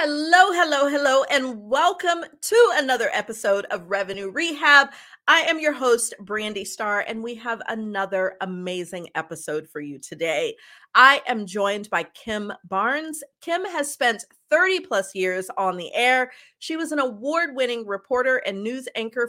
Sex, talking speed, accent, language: female, 150 wpm, American, English